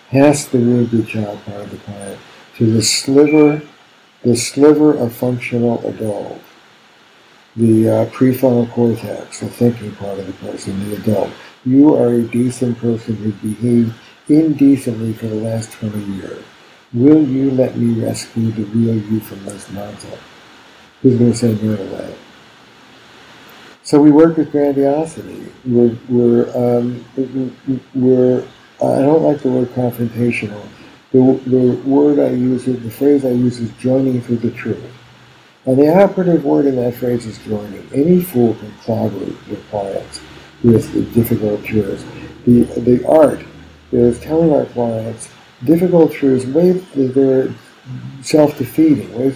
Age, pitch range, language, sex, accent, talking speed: 60-79, 115-140 Hz, English, male, American, 145 wpm